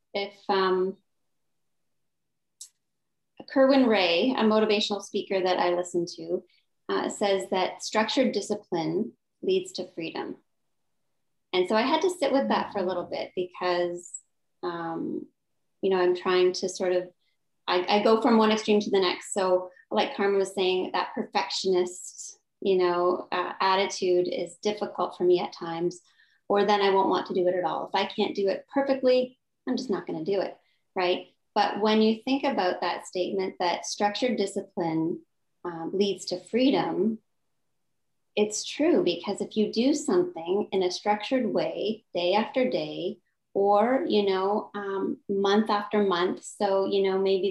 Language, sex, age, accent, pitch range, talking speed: English, female, 20-39, American, 185-215 Hz, 165 wpm